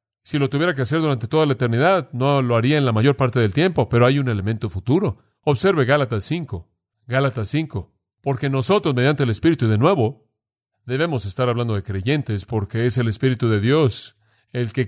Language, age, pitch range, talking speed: Spanish, 40-59, 120-155 Hz, 195 wpm